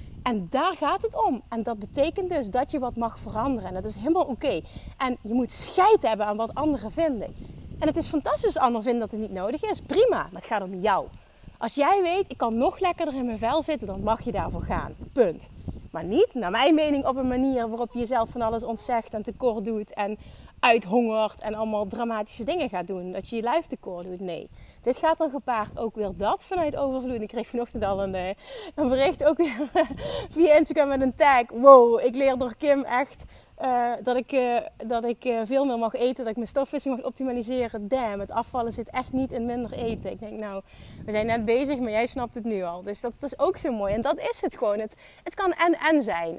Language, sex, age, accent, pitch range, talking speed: Dutch, female, 30-49, Dutch, 220-285 Hz, 230 wpm